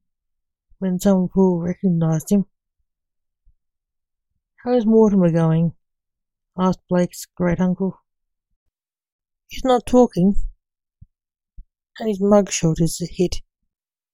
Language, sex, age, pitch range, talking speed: English, female, 60-79, 165-195 Hz, 95 wpm